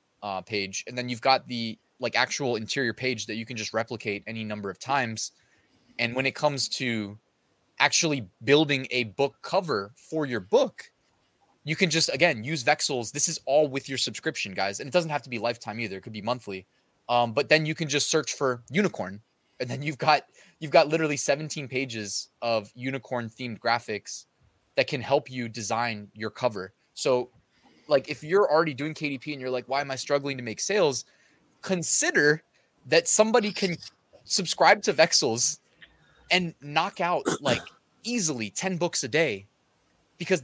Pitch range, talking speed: 115-155 Hz, 180 wpm